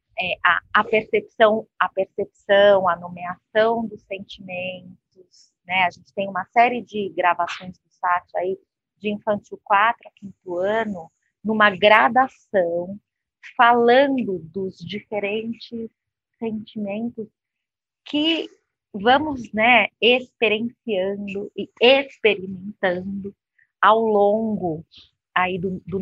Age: 30-49